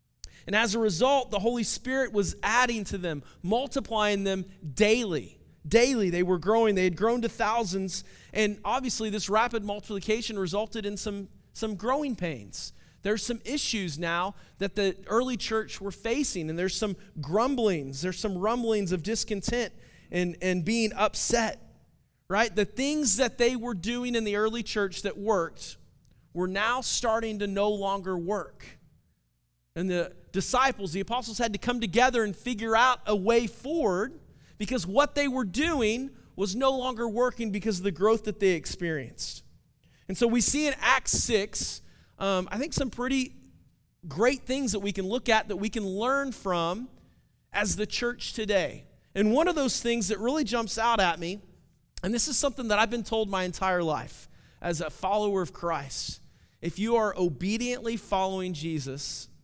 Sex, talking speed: male, 170 wpm